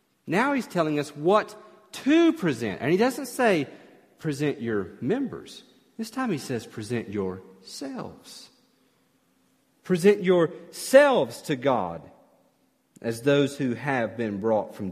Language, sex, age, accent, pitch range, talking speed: English, male, 40-59, American, 150-235 Hz, 125 wpm